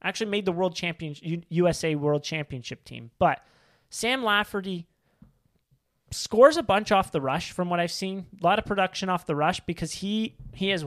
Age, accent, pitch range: 30-49, American, 145-185 Hz